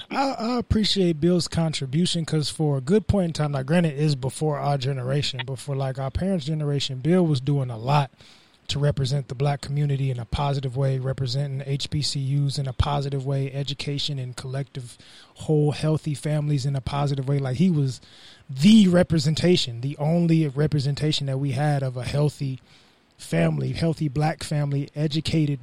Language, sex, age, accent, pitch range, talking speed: English, male, 20-39, American, 135-155 Hz, 175 wpm